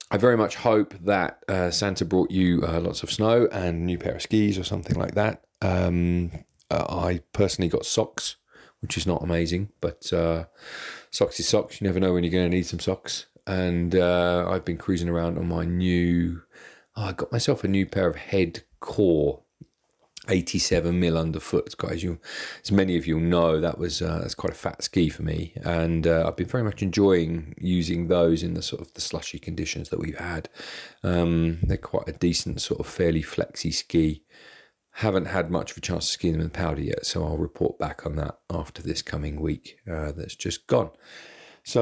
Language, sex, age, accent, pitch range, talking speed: English, male, 30-49, British, 80-95 Hz, 205 wpm